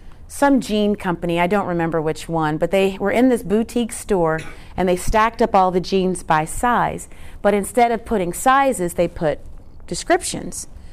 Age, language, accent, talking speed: 30-49, English, American, 175 wpm